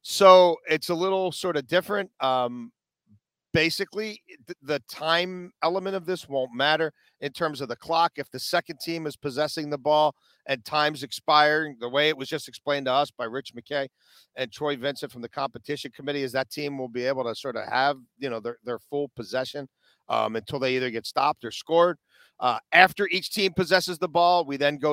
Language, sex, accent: English, male, American